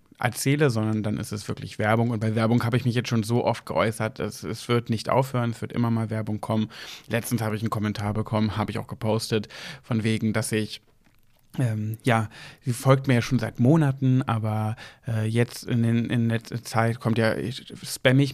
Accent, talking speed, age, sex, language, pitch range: German, 210 wpm, 30-49, male, German, 110-135 Hz